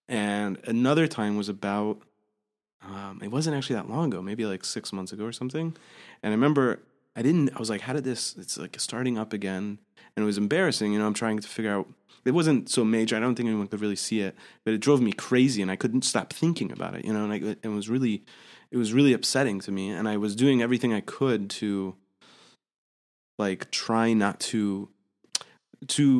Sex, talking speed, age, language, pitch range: male, 220 wpm, 20-39, English, 105-125 Hz